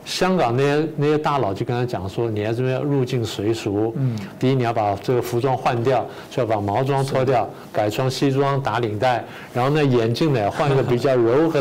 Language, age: Chinese, 50-69